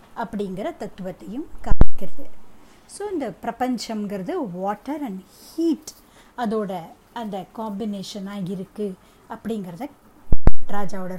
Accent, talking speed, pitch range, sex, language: native, 80 wpm, 200-285 Hz, female, Tamil